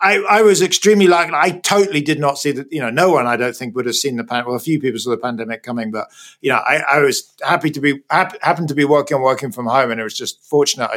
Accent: British